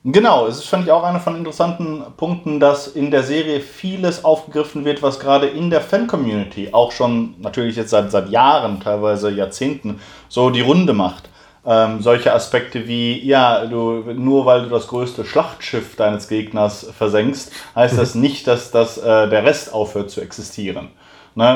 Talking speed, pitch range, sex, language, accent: 175 wpm, 115-140 Hz, male, German, German